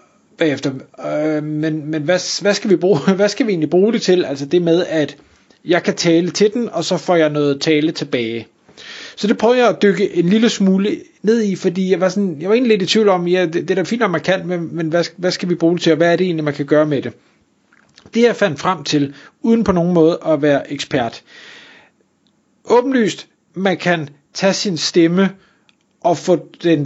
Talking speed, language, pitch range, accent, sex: 230 wpm, Danish, 145-190 Hz, native, male